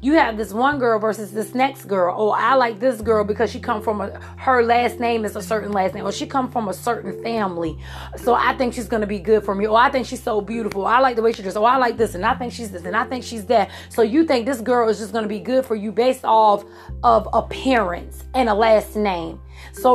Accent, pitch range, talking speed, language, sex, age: American, 210-250 Hz, 280 wpm, English, female, 30-49